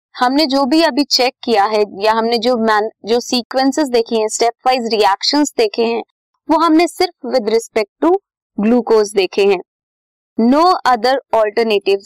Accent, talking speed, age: native, 160 wpm, 20-39